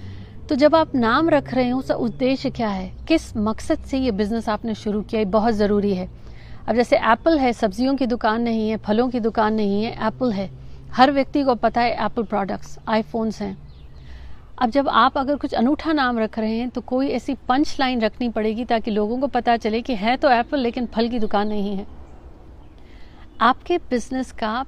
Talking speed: 200 wpm